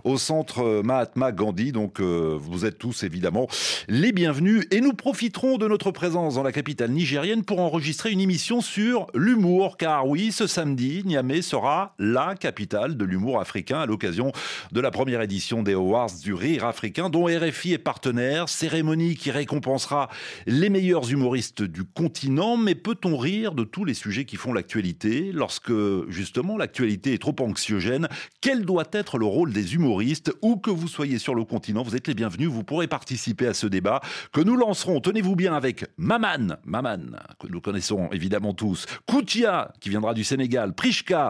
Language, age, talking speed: French, 40-59, 175 wpm